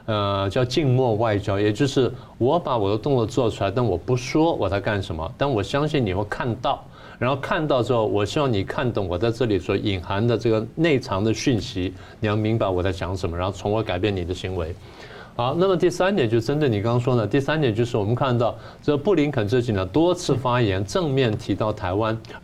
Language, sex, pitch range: Chinese, male, 105-140 Hz